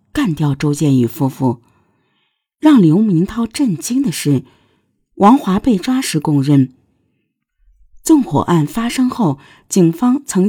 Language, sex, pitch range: Chinese, female, 140-230 Hz